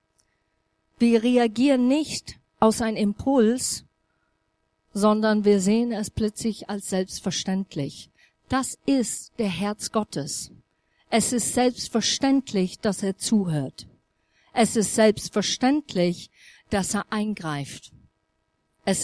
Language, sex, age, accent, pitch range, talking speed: German, female, 50-69, German, 190-240 Hz, 100 wpm